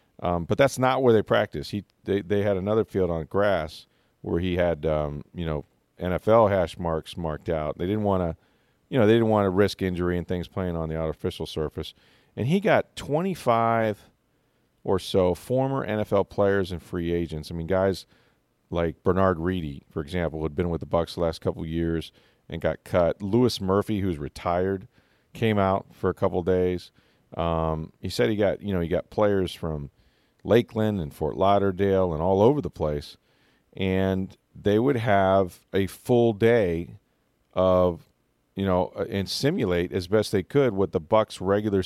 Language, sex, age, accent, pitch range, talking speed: English, male, 40-59, American, 85-105 Hz, 185 wpm